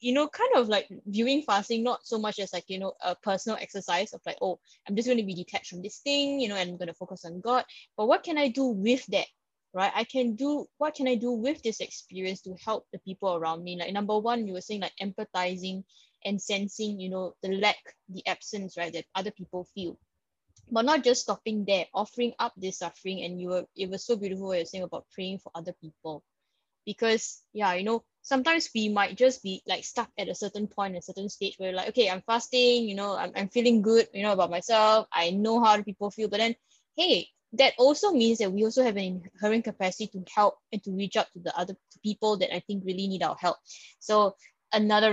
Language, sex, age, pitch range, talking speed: English, female, 10-29, 190-235 Hz, 240 wpm